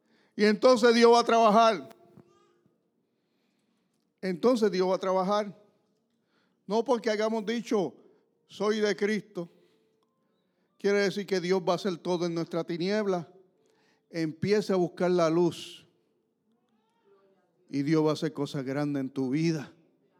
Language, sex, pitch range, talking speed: English, male, 160-215 Hz, 130 wpm